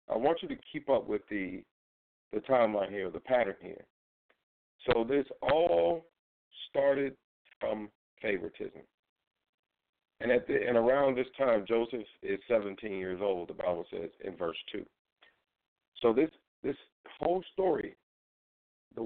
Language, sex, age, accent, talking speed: English, male, 50-69, American, 140 wpm